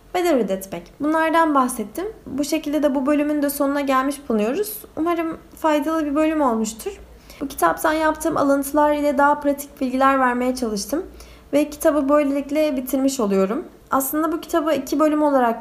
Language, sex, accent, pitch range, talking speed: Turkish, female, native, 250-300 Hz, 140 wpm